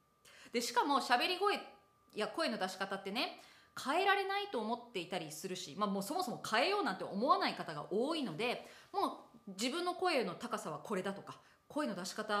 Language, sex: Japanese, female